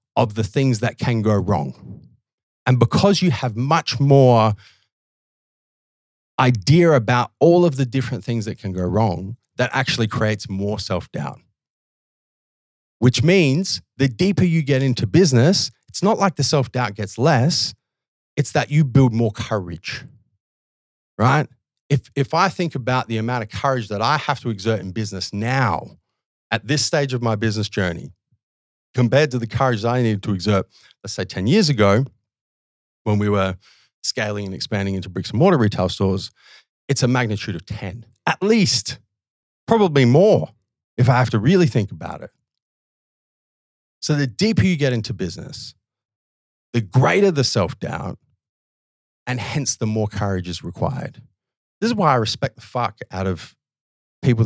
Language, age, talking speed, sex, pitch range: English, 30-49, 160 wpm, male, 100-135 Hz